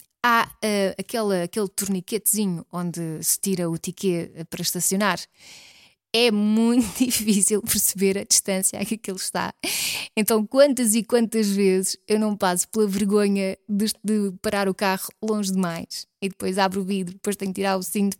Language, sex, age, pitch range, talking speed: Portuguese, female, 20-39, 190-245 Hz, 160 wpm